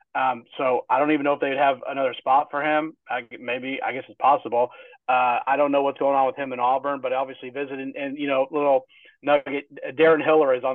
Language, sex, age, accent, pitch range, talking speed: English, male, 30-49, American, 130-160 Hz, 235 wpm